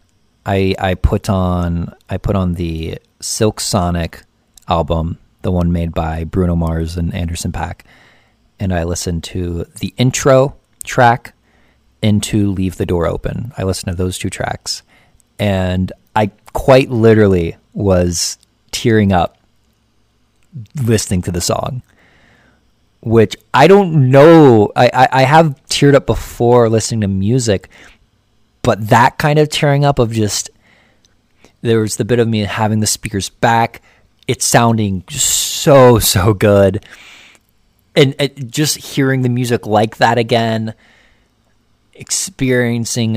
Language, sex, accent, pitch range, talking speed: English, male, American, 90-120 Hz, 135 wpm